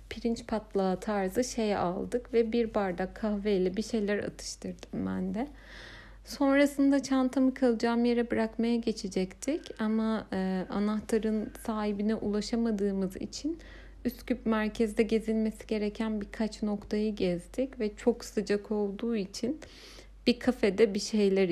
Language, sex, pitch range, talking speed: Turkish, female, 200-235 Hz, 115 wpm